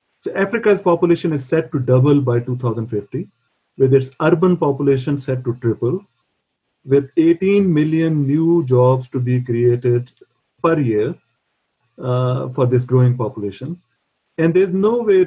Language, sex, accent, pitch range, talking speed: English, male, Indian, 125-150 Hz, 140 wpm